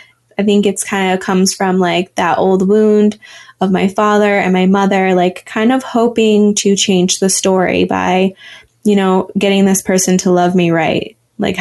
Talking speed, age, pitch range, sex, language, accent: 185 wpm, 20-39, 180-210 Hz, female, English, American